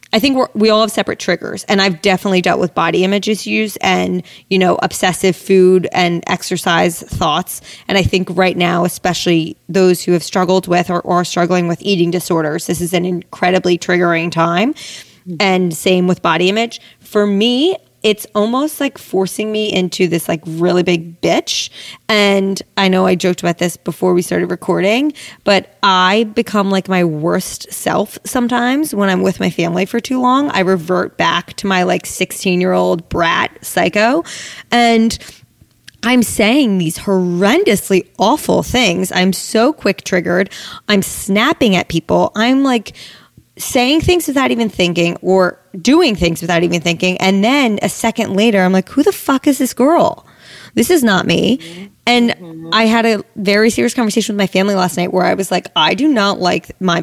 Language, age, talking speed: English, 20-39, 180 wpm